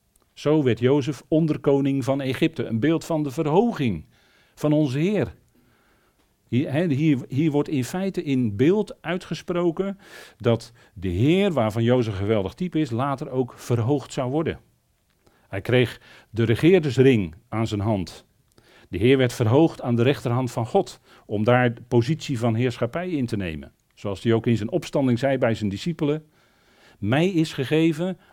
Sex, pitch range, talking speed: male, 115-150 Hz, 155 wpm